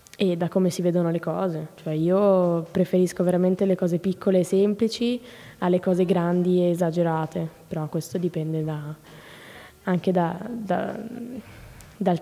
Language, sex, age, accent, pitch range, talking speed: Italian, female, 20-39, native, 170-195 Hz, 130 wpm